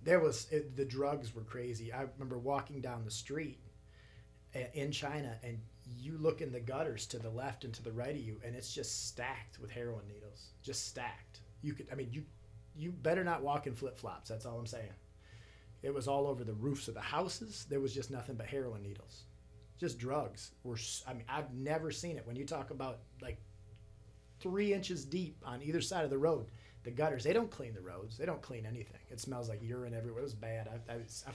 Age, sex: 30-49, male